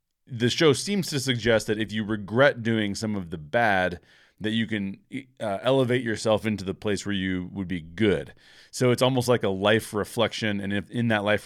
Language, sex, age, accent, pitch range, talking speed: English, male, 30-49, American, 95-125 Hz, 210 wpm